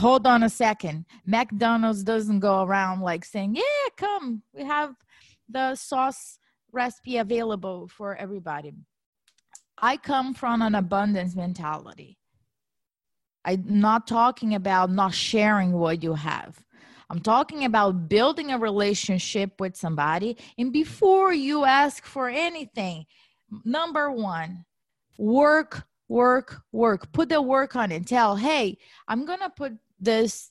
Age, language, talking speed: 20-39, English, 130 wpm